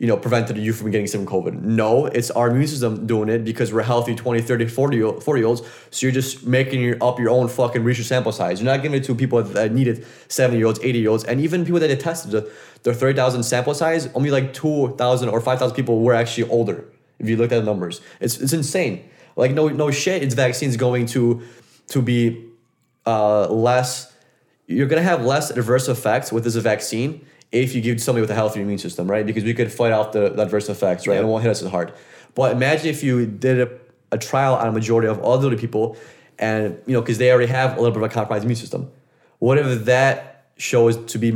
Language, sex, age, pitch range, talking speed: English, male, 20-39, 115-130 Hz, 225 wpm